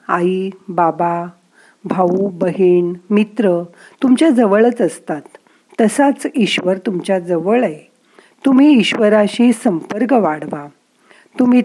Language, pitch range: Marathi, 175-240 Hz